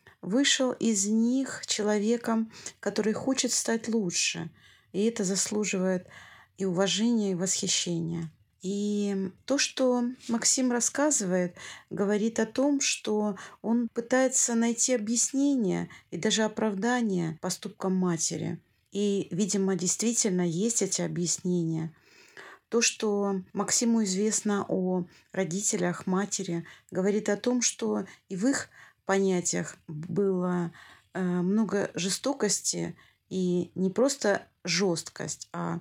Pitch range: 180-230 Hz